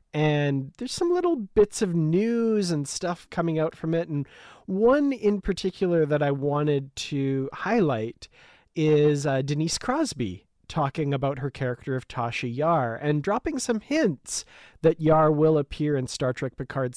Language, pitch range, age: English, 135-170 Hz, 40-59